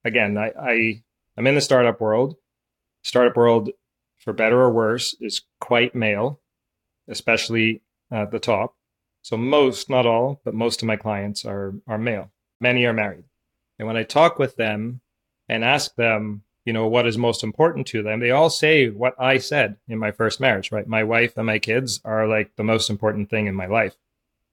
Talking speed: 190 wpm